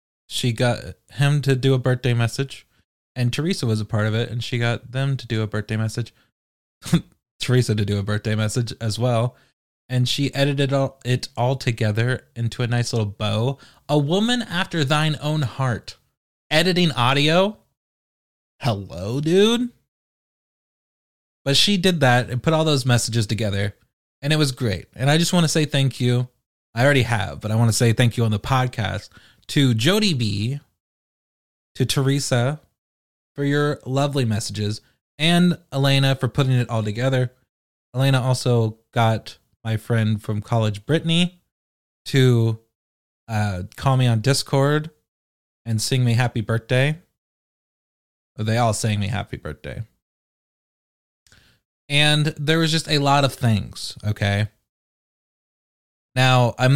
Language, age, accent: English, 20-39, American